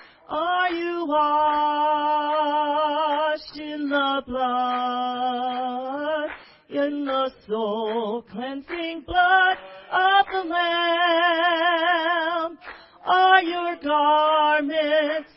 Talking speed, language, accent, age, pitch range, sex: 60 wpm, English, American, 40-59, 270-325 Hz, female